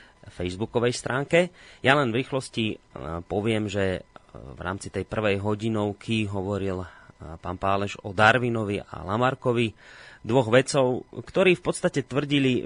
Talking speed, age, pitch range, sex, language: 125 wpm, 30-49, 100-125 Hz, male, Slovak